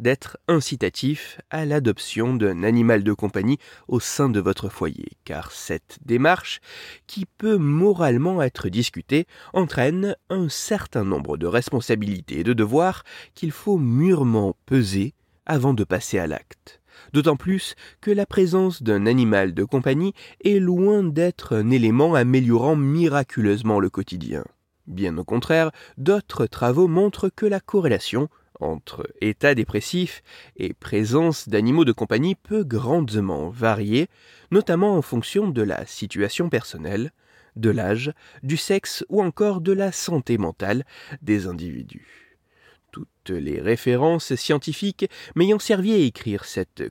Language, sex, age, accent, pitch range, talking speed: French, male, 30-49, French, 110-180 Hz, 135 wpm